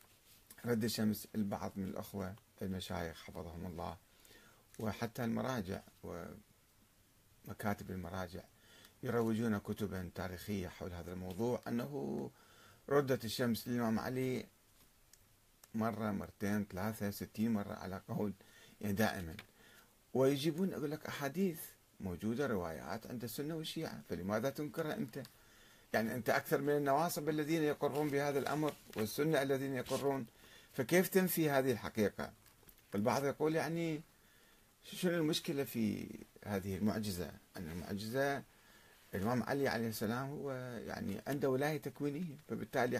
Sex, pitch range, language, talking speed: male, 100-135 Hz, Arabic, 110 wpm